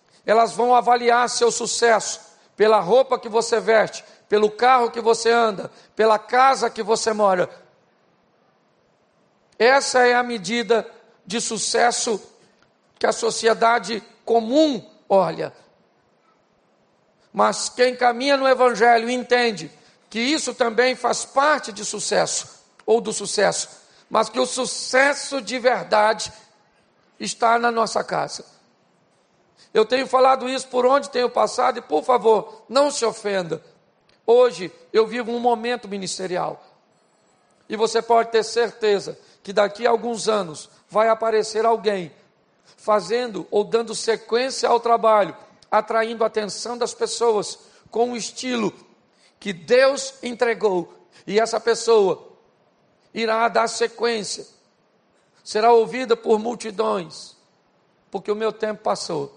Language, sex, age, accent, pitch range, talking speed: Portuguese, male, 50-69, Brazilian, 215-245 Hz, 125 wpm